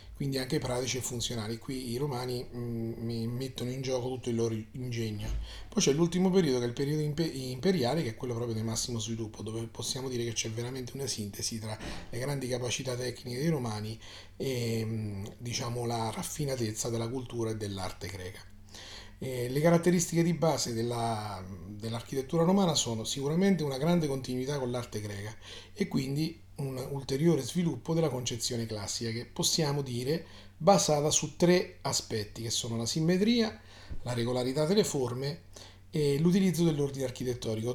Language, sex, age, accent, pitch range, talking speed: Italian, male, 30-49, native, 110-150 Hz, 160 wpm